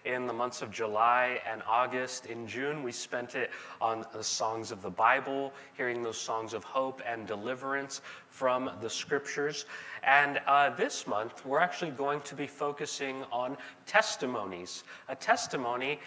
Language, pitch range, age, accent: English, 110-145 Hz, 30-49, American